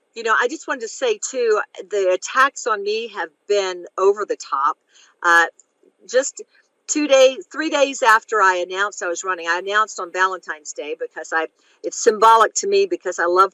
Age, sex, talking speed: 50-69, female, 190 wpm